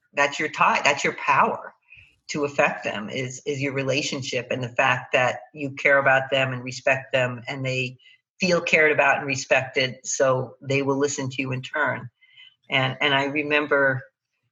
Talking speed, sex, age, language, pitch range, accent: 180 wpm, female, 50-69, English, 130-155 Hz, American